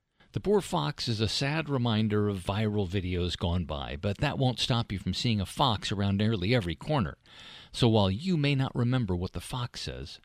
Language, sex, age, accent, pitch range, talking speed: English, male, 50-69, American, 95-140 Hz, 205 wpm